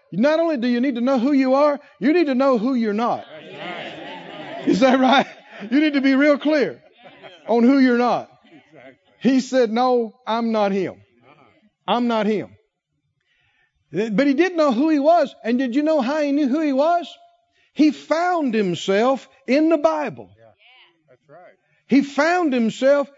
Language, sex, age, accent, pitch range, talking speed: English, male, 50-69, American, 230-310 Hz, 170 wpm